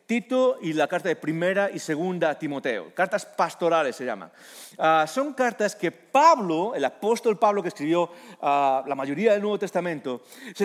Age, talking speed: 40-59, 175 wpm